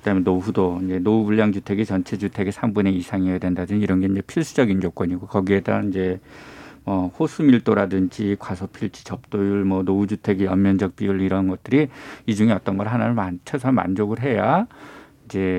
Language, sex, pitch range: Korean, male, 95-120 Hz